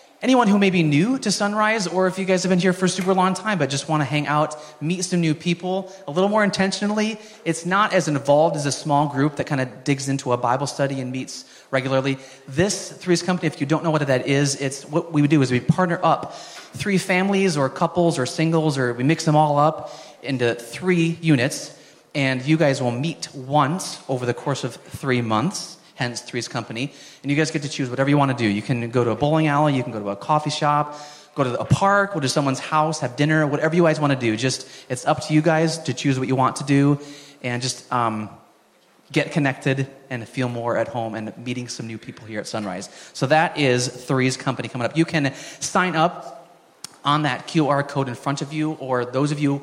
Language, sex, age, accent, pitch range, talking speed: English, male, 30-49, American, 130-165 Hz, 235 wpm